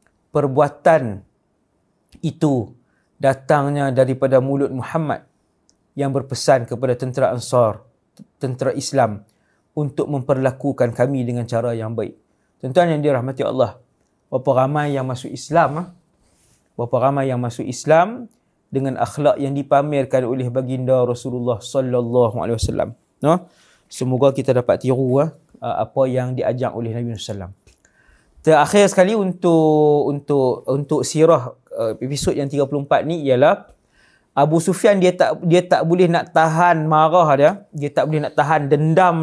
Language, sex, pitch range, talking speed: English, male, 130-160 Hz, 130 wpm